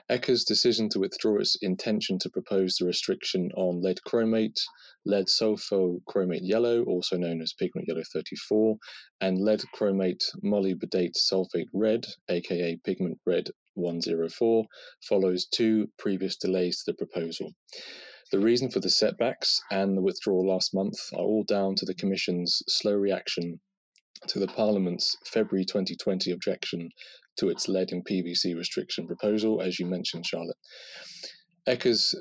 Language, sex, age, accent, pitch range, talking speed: English, male, 30-49, British, 90-110 Hz, 140 wpm